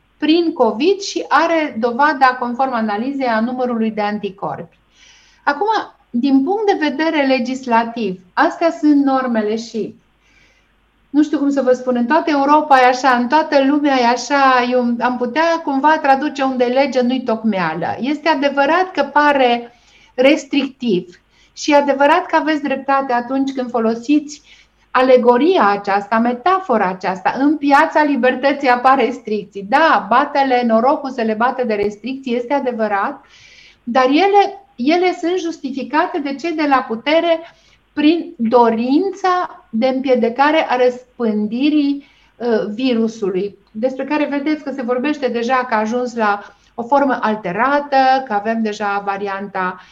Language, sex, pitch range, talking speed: Romanian, female, 235-290 Hz, 140 wpm